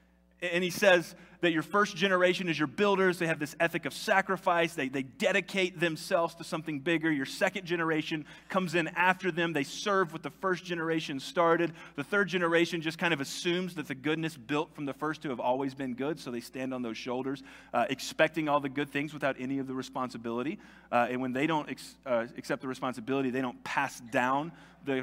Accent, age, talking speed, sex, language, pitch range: American, 30-49, 210 wpm, male, English, 125-175 Hz